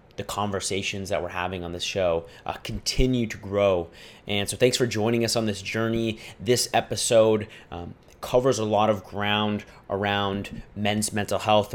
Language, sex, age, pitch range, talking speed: English, male, 30-49, 105-120 Hz, 170 wpm